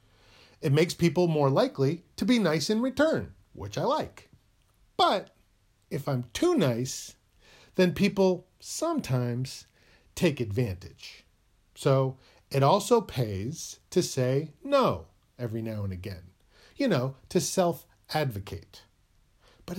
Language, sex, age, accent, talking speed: English, male, 40-59, American, 120 wpm